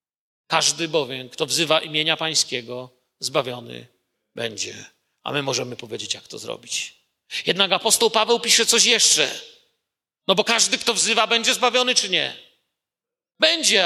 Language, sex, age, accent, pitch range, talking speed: Polish, male, 40-59, native, 175-255 Hz, 135 wpm